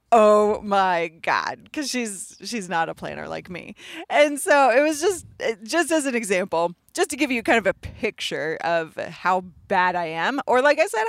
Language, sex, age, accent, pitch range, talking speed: English, female, 30-49, American, 180-250 Hz, 200 wpm